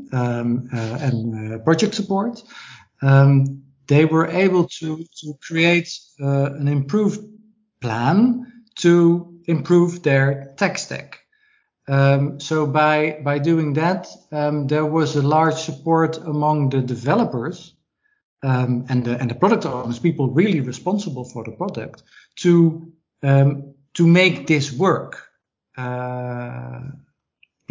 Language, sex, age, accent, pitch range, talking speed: English, male, 50-69, Dutch, 130-170 Hz, 125 wpm